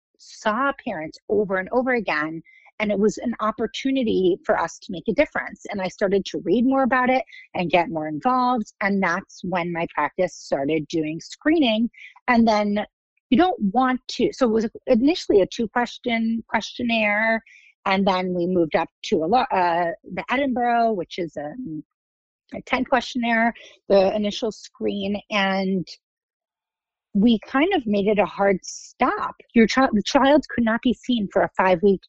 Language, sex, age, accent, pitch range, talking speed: English, female, 40-59, American, 185-245 Hz, 165 wpm